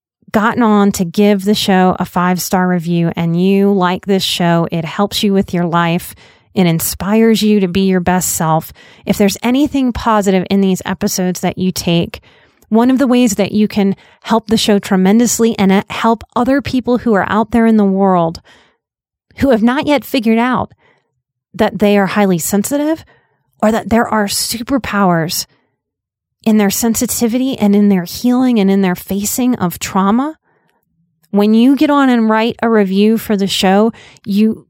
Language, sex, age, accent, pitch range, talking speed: English, female, 30-49, American, 185-225 Hz, 175 wpm